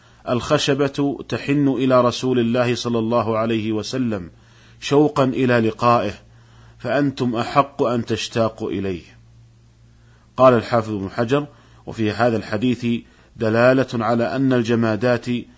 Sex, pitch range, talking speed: male, 110-130 Hz, 110 wpm